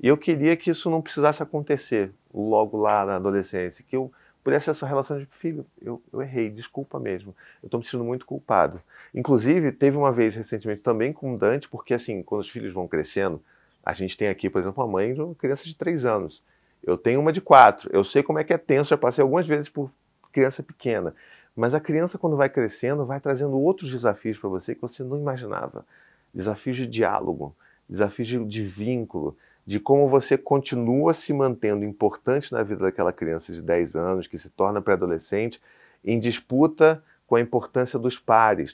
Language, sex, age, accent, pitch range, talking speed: Portuguese, male, 40-59, Brazilian, 105-140 Hz, 195 wpm